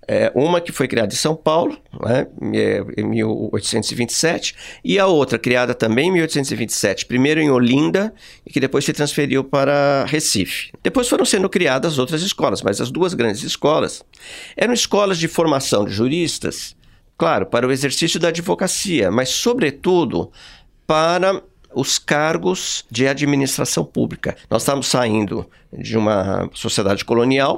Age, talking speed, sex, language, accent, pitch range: 50-69, 140 wpm, male, Portuguese, Brazilian, 110-165 Hz